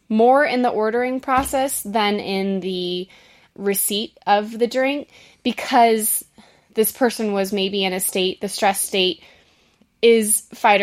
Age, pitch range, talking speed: 20-39, 190-225 Hz, 140 wpm